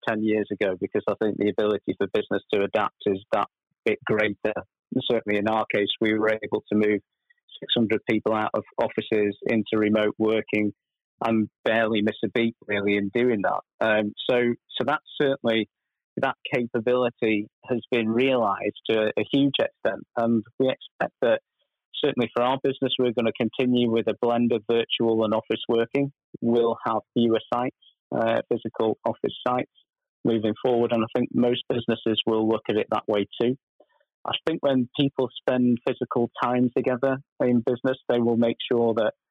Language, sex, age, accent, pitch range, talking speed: English, male, 30-49, British, 110-125 Hz, 175 wpm